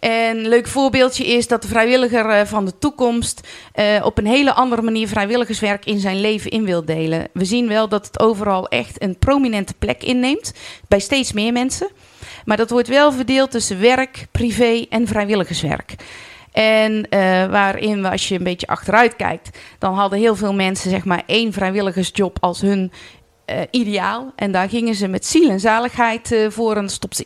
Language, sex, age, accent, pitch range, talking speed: Dutch, female, 30-49, Dutch, 195-245 Hz, 180 wpm